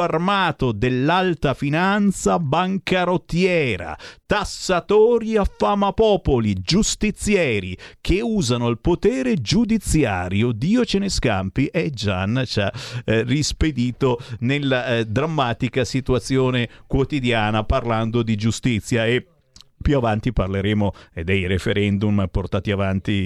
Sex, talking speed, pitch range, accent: male, 105 wpm, 105-160 Hz, native